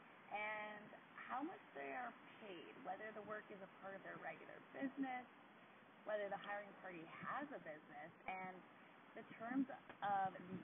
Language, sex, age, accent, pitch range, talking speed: English, female, 20-39, American, 180-235 Hz, 160 wpm